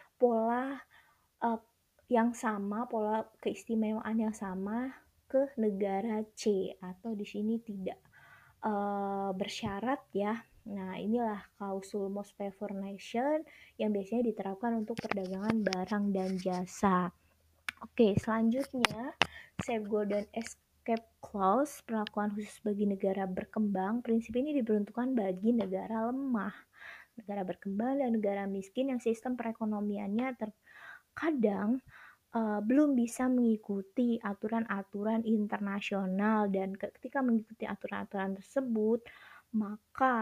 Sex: female